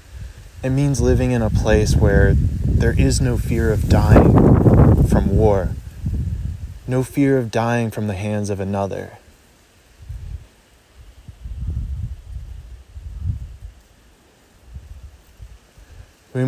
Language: English